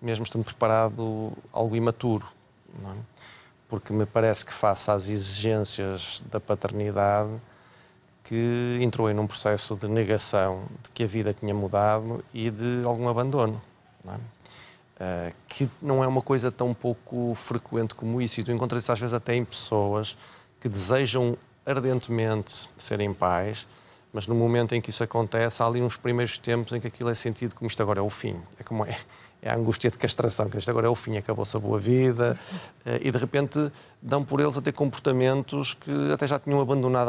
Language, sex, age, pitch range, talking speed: Portuguese, male, 30-49, 105-120 Hz, 185 wpm